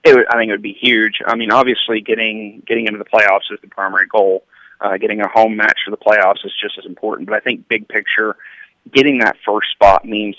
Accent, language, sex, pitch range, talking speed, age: American, English, male, 100-115 Hz, 245 wpm, 30-49